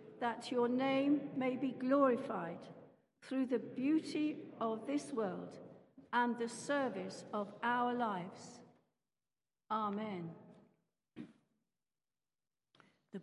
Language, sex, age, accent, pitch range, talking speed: English, female, 60-79, British, 210-250 Hz, 90 wpm